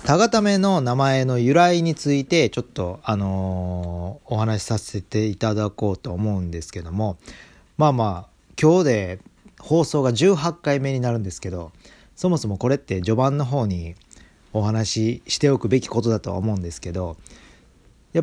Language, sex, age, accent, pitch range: Japanese, male, 40-59, native, 100-140 Hz